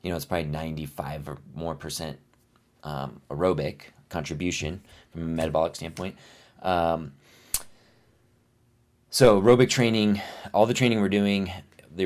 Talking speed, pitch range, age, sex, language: 125 wpm, 80-95 Hz, 30-49, male, English